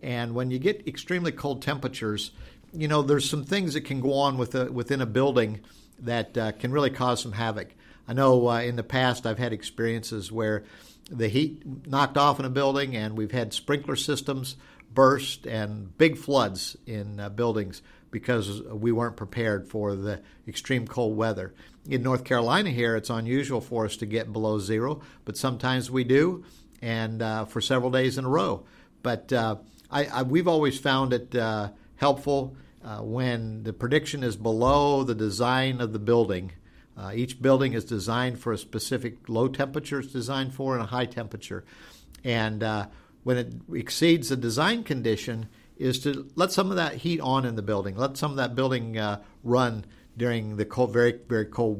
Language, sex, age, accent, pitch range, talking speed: English, male, 50-69, American, 110-135 Hz, 180 wpm